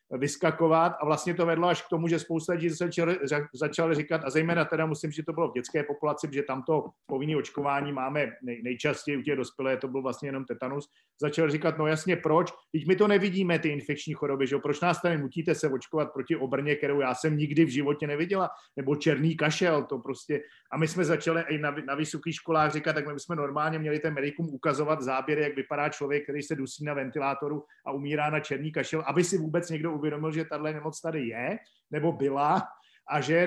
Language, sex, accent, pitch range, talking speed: Czech, male, native, 140-160 Hz, 215 wpm